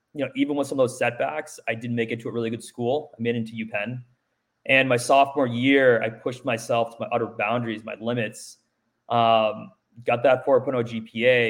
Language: English